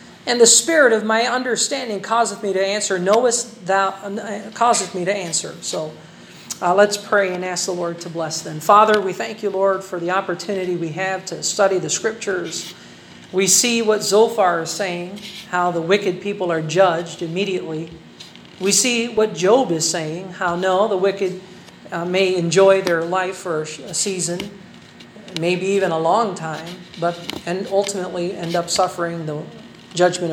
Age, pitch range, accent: 40-59, 170-205 Hz, American